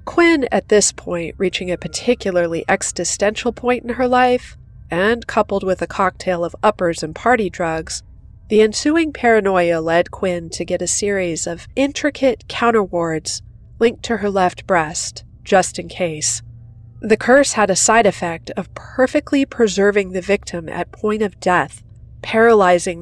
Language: English